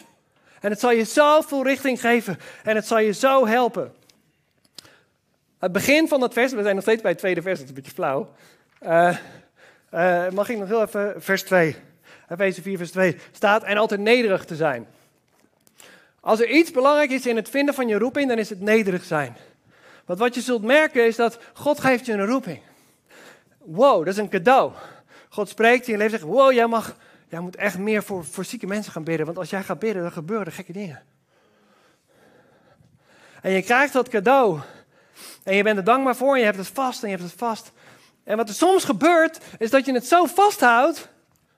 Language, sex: Dutch, male